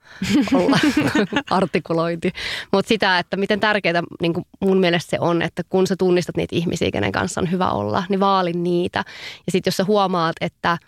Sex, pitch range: female, 170-195 Hz